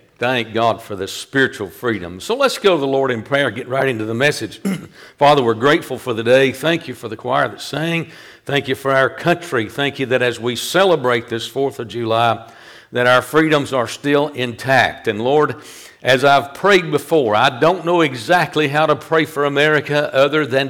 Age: 50-69